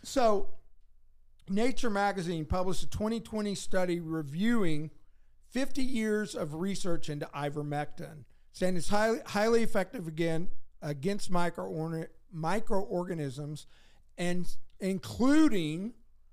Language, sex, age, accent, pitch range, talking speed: English, male, 50-69, American, 155-205 Hz, 90 wpm